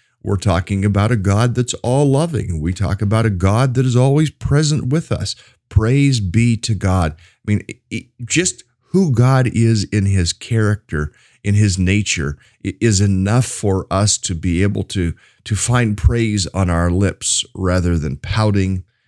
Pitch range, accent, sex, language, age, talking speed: 90-115 Hz, American, male, English, 50-69, 160 wpm